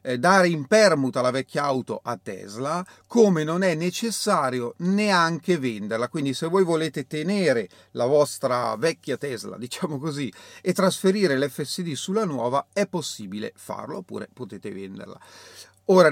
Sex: male